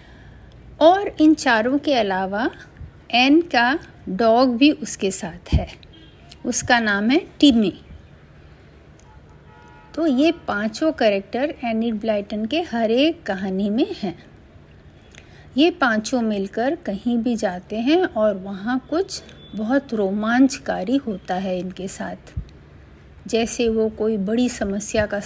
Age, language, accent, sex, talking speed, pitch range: 50-69, Hindi, native, female, 120 wpm, 195-255 Hz